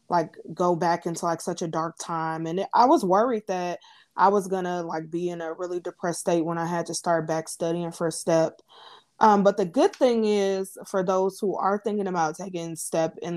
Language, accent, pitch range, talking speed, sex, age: English, American, 170-195 Hz, 225 wpm, female, 20-39